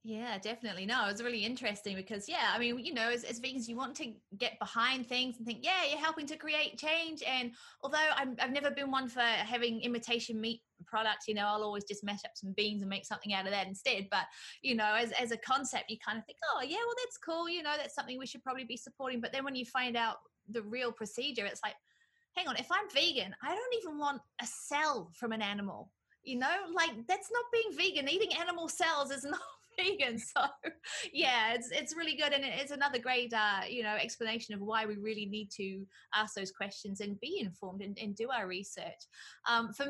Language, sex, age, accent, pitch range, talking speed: English, female, 30-49, British, 215-280 Hz, 230 wpm